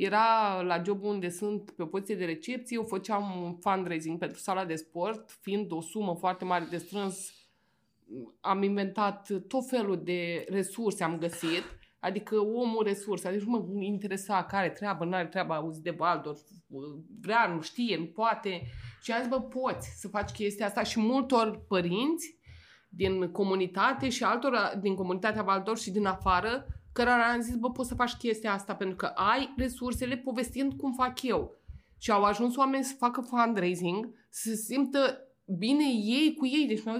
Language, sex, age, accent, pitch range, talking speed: Romanian, female, 20-39, native, 185-240 Hz, 170 wpm